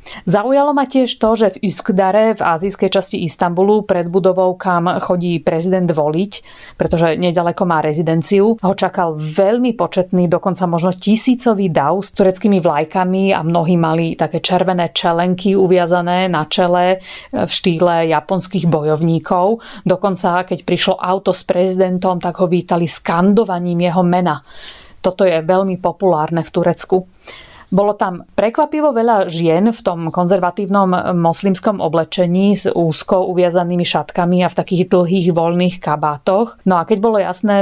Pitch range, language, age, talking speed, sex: 170-195 Hz, Slovak, 30-49, 140 wpm, female